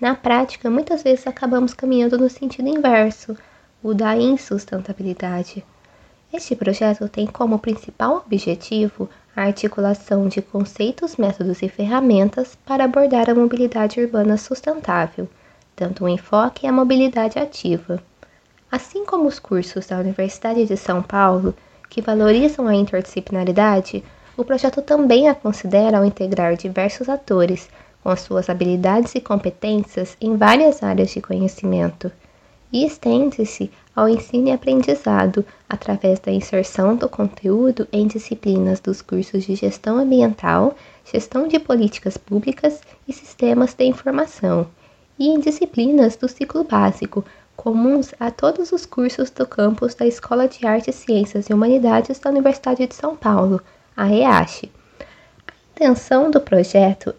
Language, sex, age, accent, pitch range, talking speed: Portuguese, female, 20-39, Brazilian, 195-260 Hz, 135 wpm